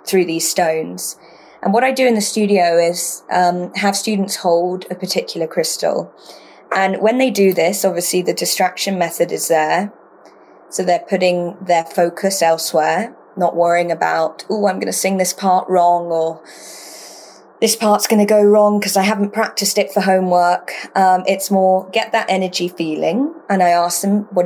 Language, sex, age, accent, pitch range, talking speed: English, female, 20-39, British, 175-205 Hz, 175 wpm